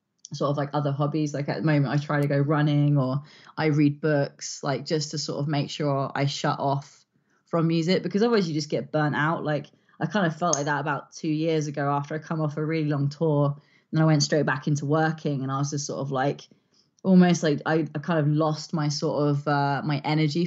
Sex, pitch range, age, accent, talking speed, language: female, 140-160 Hz, 20-39, British, 240 wpm, English